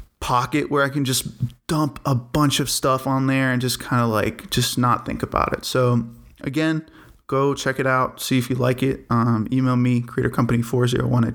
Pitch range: 120-140 Hz